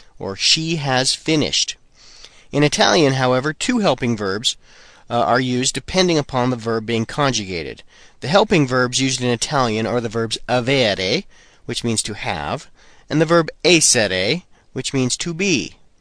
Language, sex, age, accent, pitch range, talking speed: Italian, male, 40-59, American, 115-160 Hz, 155 wpm